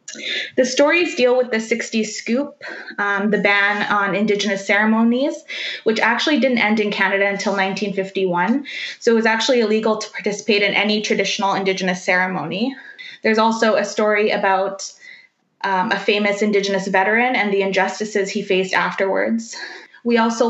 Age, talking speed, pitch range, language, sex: 20-39, 150 wpm, 200-235 Hz, English, female